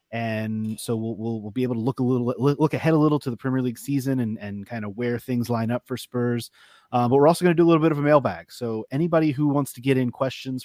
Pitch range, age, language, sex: 110-135 Hz, 30-49, English, male